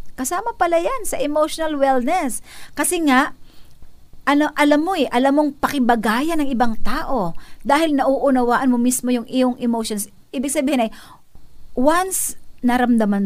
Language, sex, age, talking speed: Filipino, female, 50-69, 135 wpm